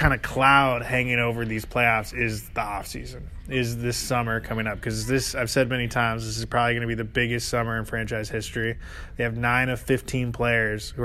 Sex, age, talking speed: male, 20-39, 215 wpm